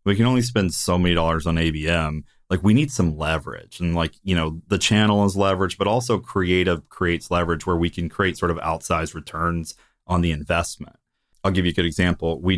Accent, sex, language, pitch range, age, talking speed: American, male, English, 85-100 Hz, 30-49, 215 wpm